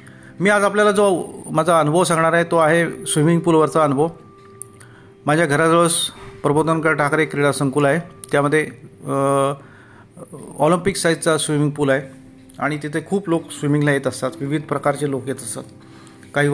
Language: Marathi